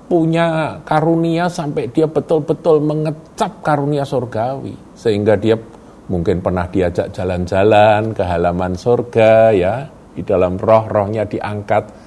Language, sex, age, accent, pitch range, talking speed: Indonesian, male, 50-69, native, 105-165 Hz, 110 wpm